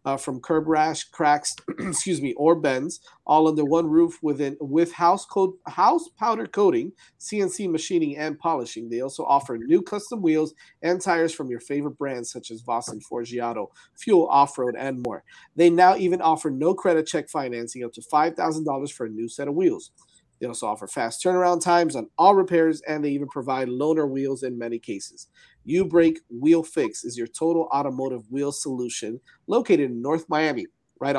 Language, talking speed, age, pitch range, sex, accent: English, 180 wpm, 40-59, 130-170 Hz, male, American